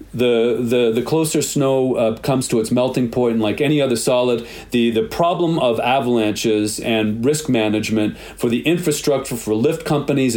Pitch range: 115-135 Hz